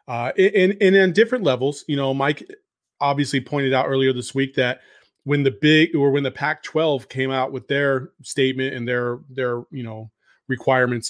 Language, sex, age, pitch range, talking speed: English, male, 30-49, 125-150 Hz, 200 wpm